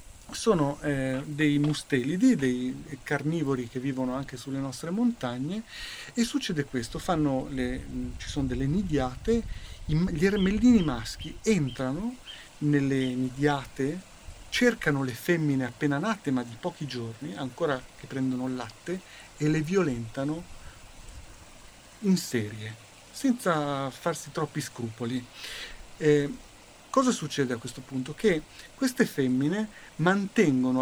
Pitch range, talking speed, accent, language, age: 125-160 Hz, 115 wpm, native, Italian, 40-59